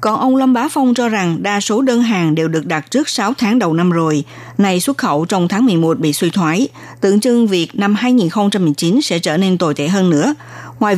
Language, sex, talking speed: Vietnamese, female, 230 wpm